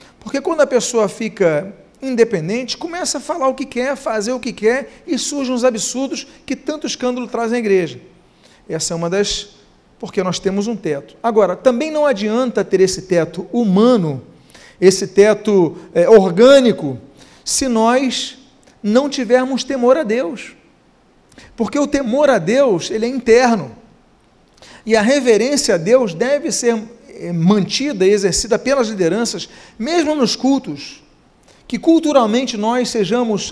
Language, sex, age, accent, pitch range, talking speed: Portuguese, male, 40-59, Brazilian, 195-255 Hz, 145 wpm